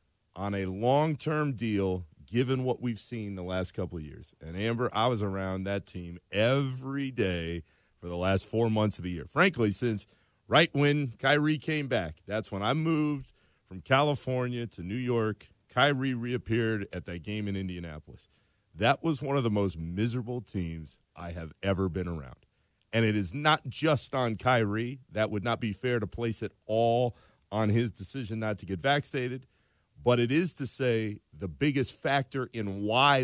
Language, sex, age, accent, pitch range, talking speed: English, male, 40-59, American, 95-130 Hz, 180 wpm